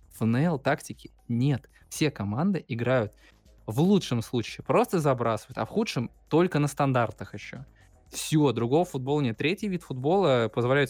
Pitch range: 115-150 Hz